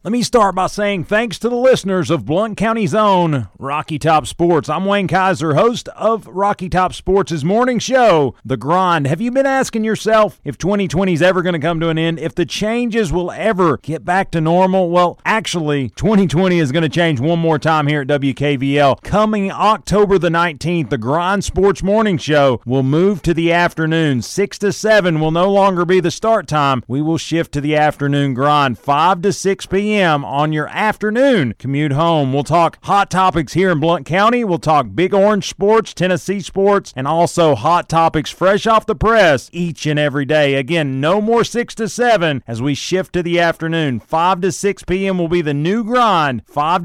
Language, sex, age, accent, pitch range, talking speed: English, male, 40-59, American, 150-200 Hz, 195 wpm